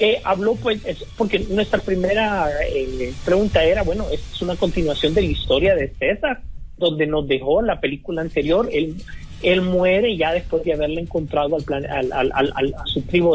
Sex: male